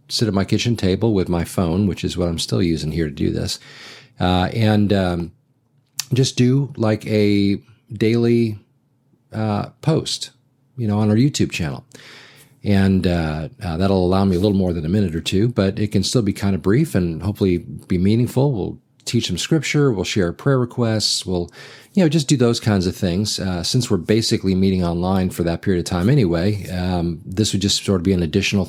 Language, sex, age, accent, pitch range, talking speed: English, male, 40-59, American, 90-120 Hz, 205 wpm